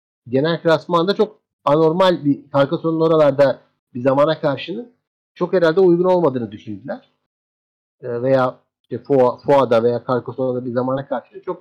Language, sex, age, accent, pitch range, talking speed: Turkish, male, 50-69, native, 120-165 Hz, 140 wpm